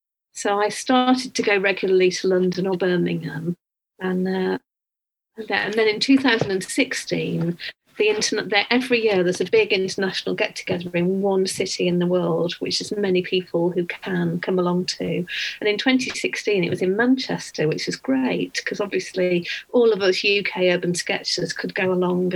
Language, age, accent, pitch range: English, 40-59, British, 180-215 Hz